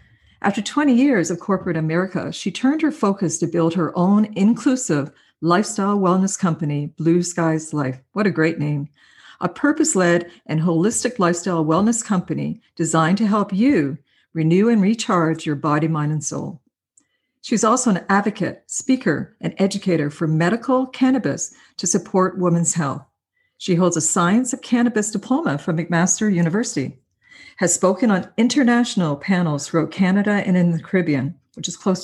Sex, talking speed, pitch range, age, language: female, 155 wpm, 165-225 Hz, 50-69, English